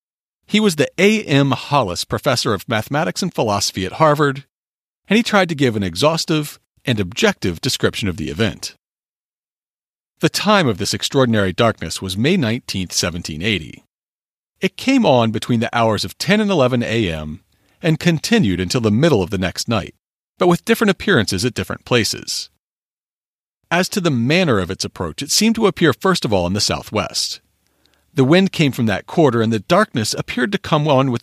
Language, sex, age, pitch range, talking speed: English, male, 40-59, 110-170 Hz, 180 wpm